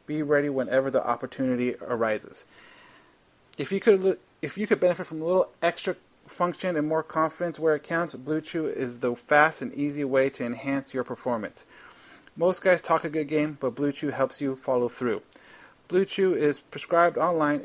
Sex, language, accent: male, English, American